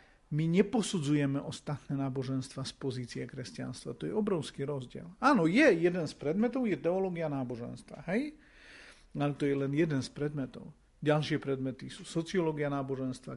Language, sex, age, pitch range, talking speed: Slovak, male, 40-59, 150-200 Hz, 145 wpm